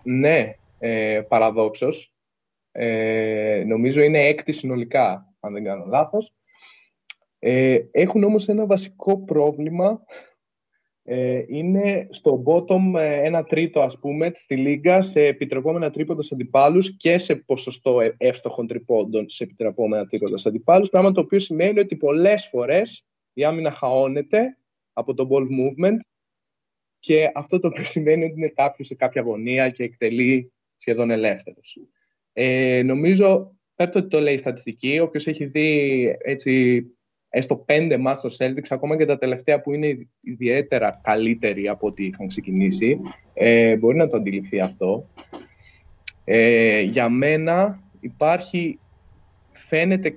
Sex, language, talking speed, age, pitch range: male, Greek, 130 wpm, 20-39, 120-165 Hz